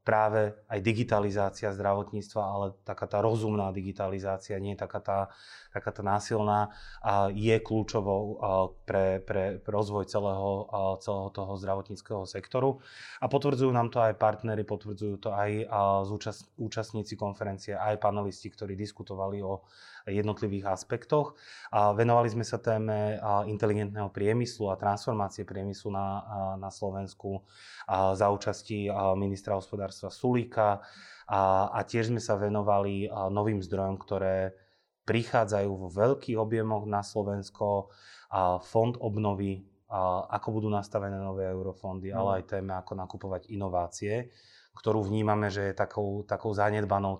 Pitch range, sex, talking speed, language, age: 95-110 Hz, male, 125 wpm, Slovak, 20-39